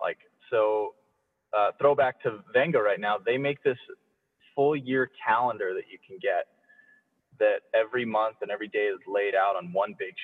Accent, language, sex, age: American, English, male, 20-39